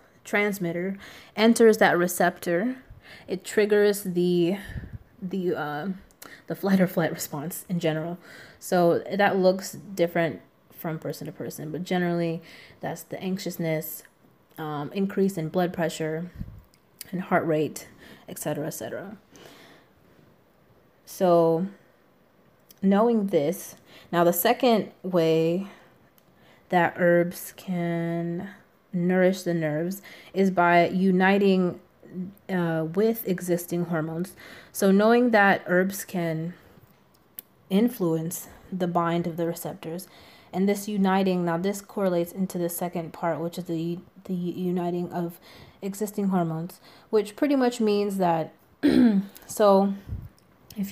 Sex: female